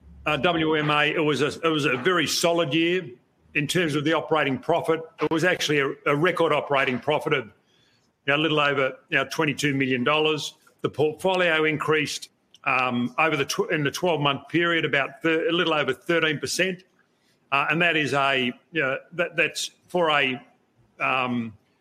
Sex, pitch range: male, 140-165 Hz